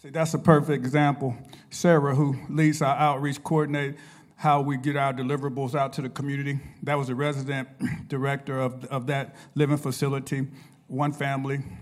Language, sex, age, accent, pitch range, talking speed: English, male, 50-69, American, 140-170 Hz, 165 wpm